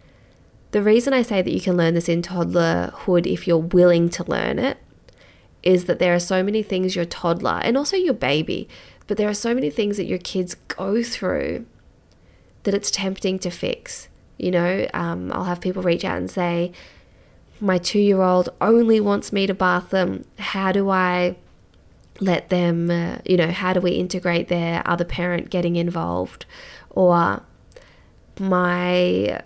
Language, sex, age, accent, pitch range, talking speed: English, female, 20-39, Australian, 170-195 Hz, 170 wpm